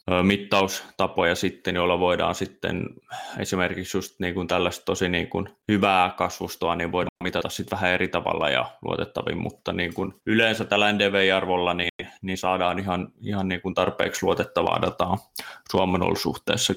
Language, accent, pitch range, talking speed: Finnish, native, 90-100 Hz, 145 wpm